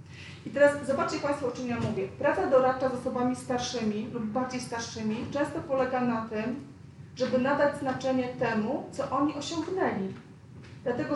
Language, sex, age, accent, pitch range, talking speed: Polish, female, 40-59, native, 230-275 Hz, 150 wpm